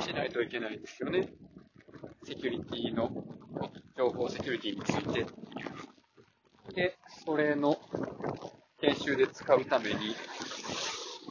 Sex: male